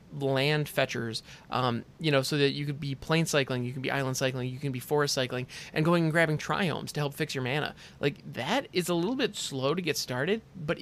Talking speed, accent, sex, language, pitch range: 240 wpm, American, male, English, 135-175 Hz